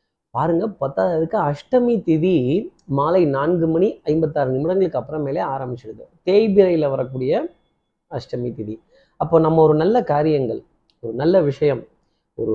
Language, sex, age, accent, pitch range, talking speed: Tamil, male, 30-49, native, 125-170 Hz, 115 wpm